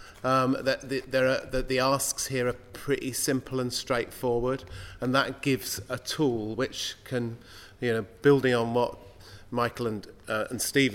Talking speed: 160 wpm